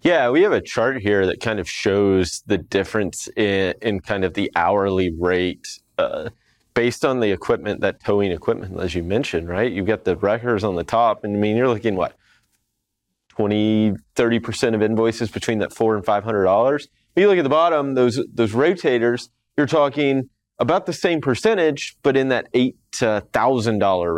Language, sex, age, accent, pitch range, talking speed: English, male, 30-49, American, 100-125 Hz, 175 wpm